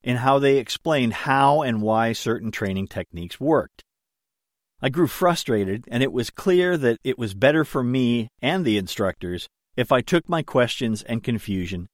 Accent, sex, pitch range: American, male, 105-140 Hz